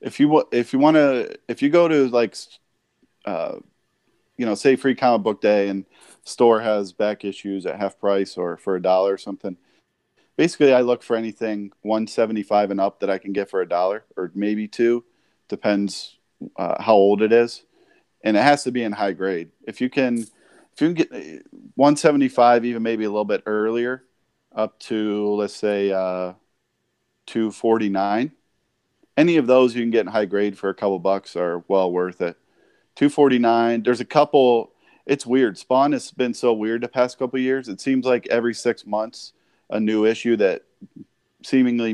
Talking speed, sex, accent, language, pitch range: 190 wpm, male, American, English, 100-120 Hz